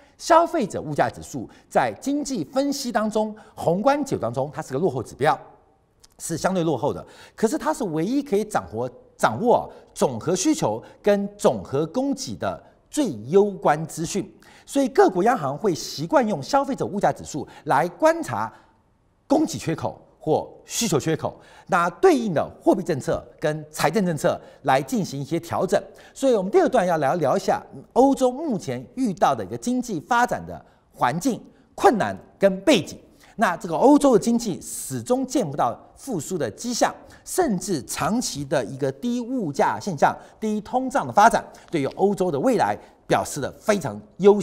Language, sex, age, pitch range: Chinese, male, 50-69, 170-265 Hz